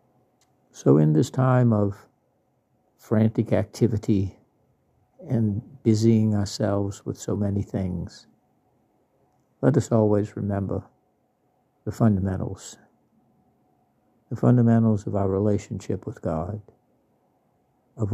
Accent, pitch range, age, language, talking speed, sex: American, 100-115 Hz, 60-79, English, 95 wpm, male